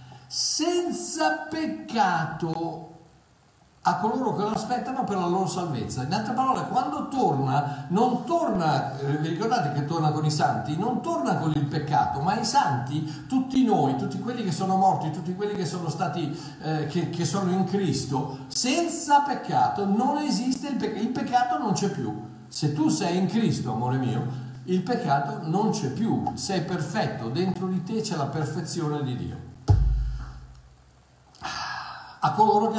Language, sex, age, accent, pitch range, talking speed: Italian, male, 50-69, native, 125-190 Hz, 155 wpm